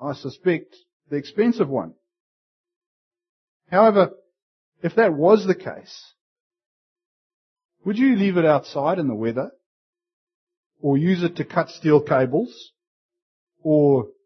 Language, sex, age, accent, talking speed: English, male, 50-69, Australian, 115 wpm